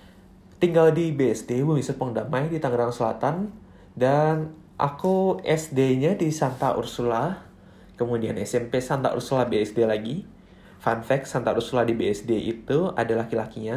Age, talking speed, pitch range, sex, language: 20-39, 130 wpm, 115-160 Hz, male, Indonesian